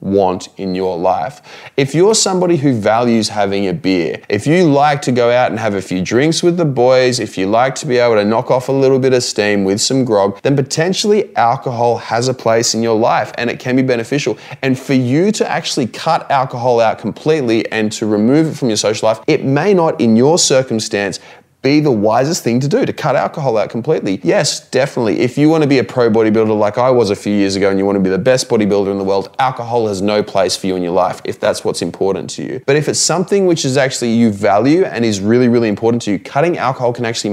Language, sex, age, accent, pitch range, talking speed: English, male, 20-39, Australian, 100-135 Hz, 250 wpm